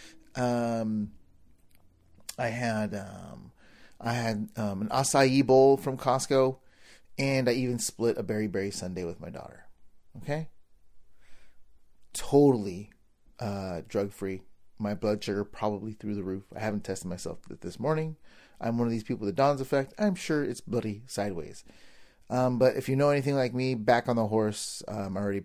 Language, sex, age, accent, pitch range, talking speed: English, male, 30-49, American, 100-135 Hz, 160 wpm